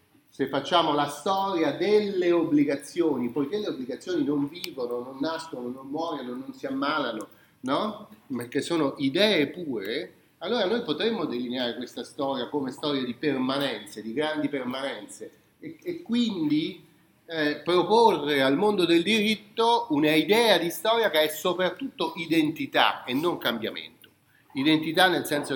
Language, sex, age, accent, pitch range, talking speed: Italian, male, 40-59, native, 135-215 Hz, 140 wpm